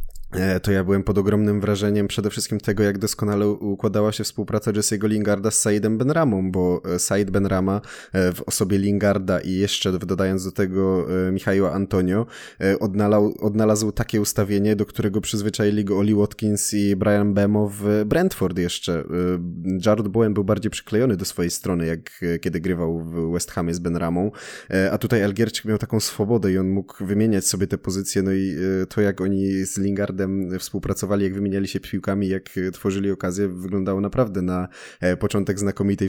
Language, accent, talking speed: Polish, native, 160 wpm